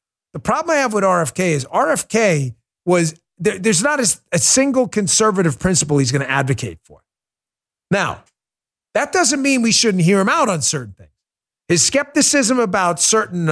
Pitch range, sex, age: 165-235 Hz, male, 50-69